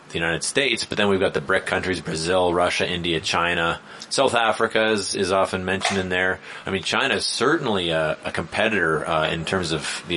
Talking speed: 205 wpm